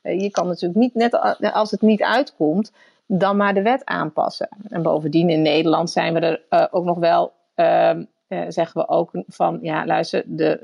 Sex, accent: female, Dutch